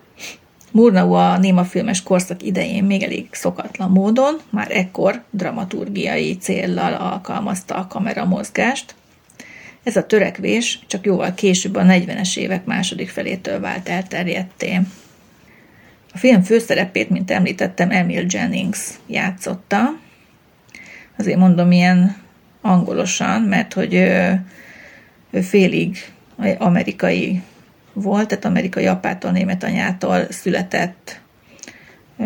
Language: Hungarian